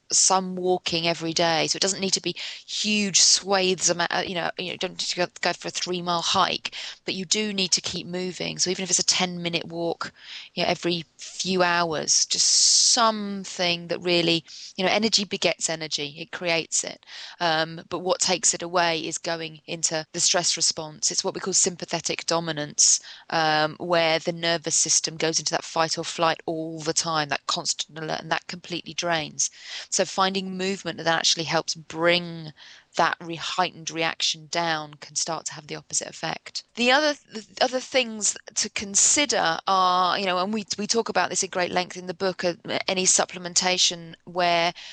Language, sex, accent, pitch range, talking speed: English, female, British, 165-185 Hz, 190 wpm